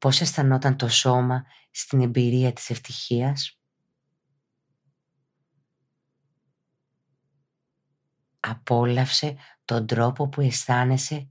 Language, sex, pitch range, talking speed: Greek, female, 130-145 Hz, 70 wpm